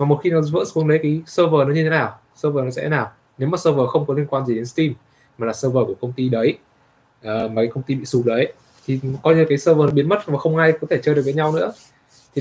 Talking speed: 295 wpm